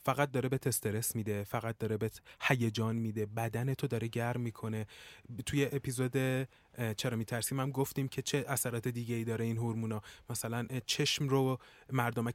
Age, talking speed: 20-39, 155 wpm